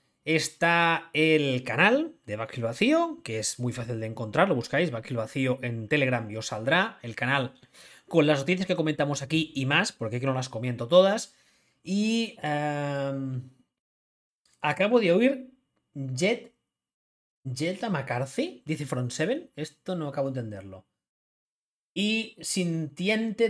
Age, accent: 30-49, Spanish